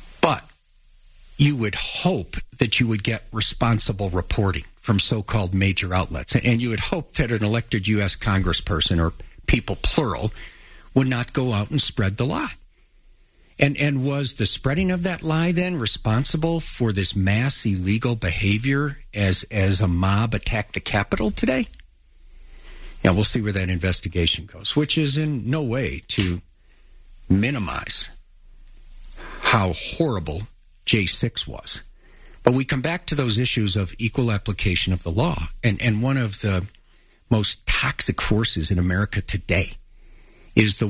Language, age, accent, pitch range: English, 50-69, American, 95-125 Hz